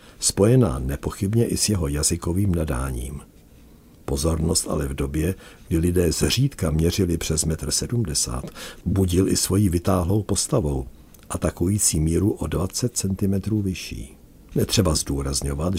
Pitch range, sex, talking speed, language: 75-100 Hz, male, 120 wpm, Czech